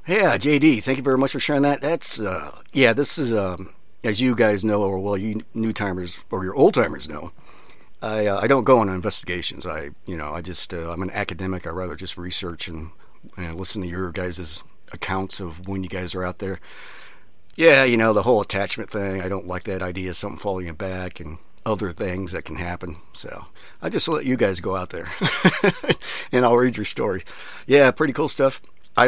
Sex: male